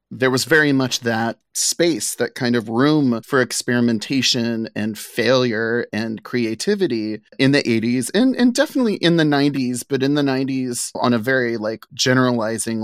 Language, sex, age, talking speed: English, male, 30-49, 160 wpm